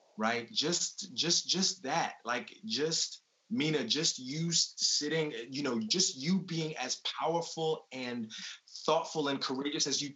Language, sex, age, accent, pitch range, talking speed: English, male, 30-49, American, 140-195 Hz, 140 wpm